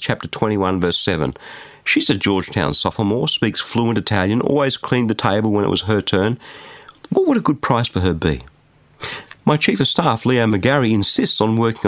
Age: 50-69